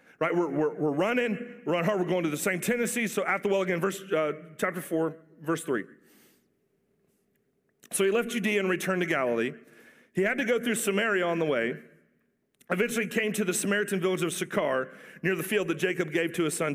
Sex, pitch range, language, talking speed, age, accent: male, 180-225 Hz, English, 215 wpm, 40-59, American